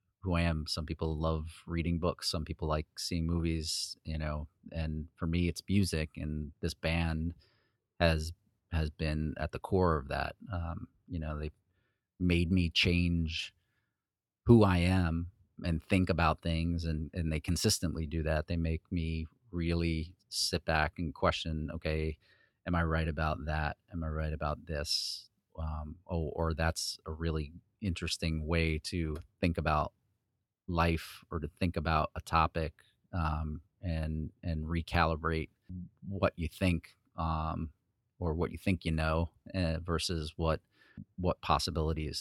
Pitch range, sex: 80-90 Hz, male